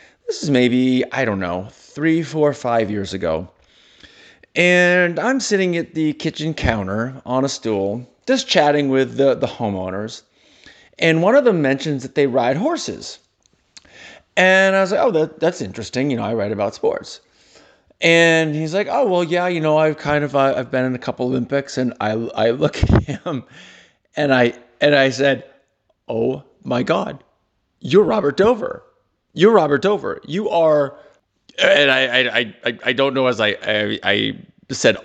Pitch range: 125-160 Hz